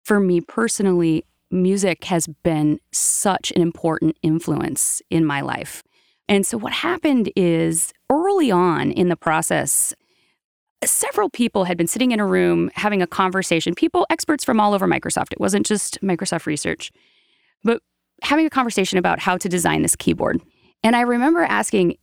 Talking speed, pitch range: 160 wpm, 170-240 Hz